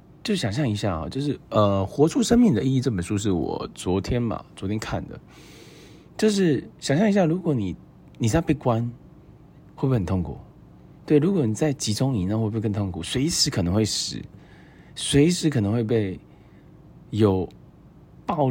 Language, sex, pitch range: Chinese, male, 95-140 Hz